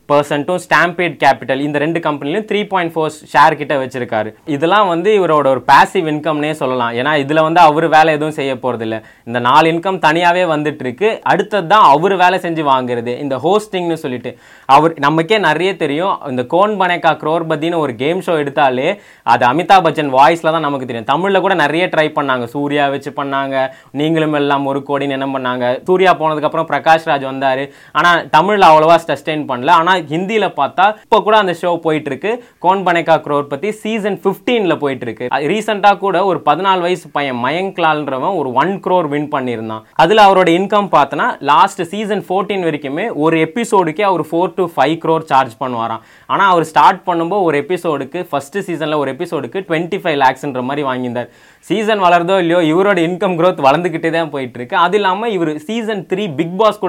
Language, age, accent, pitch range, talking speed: Tamil, 20-39, native, 140-185 Hz, 100 wpm